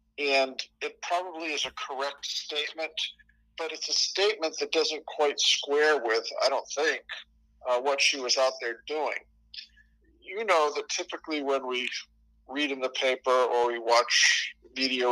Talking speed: 160 wpm